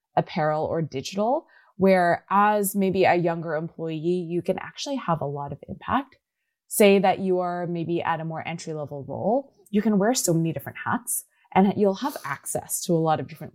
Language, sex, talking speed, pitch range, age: English, female, 195 wpm, 165-210 Hz, 20-39